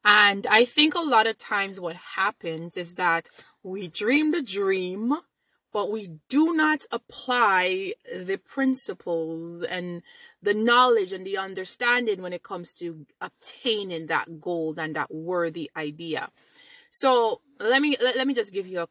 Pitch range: 175-270 Hz